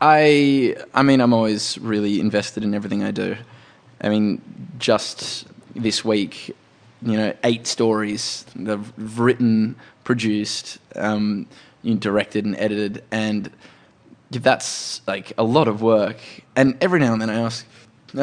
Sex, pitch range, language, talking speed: male, 110-130 Hz, English, 140 wpm